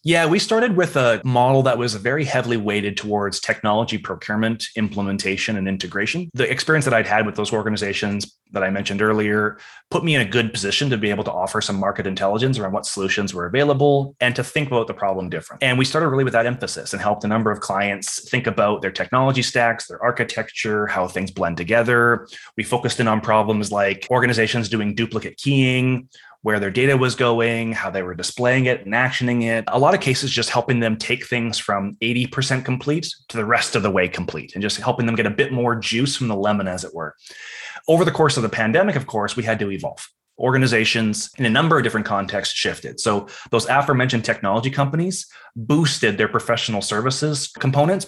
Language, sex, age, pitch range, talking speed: English, male, 20-39, 105-130 Hz, 210 wpm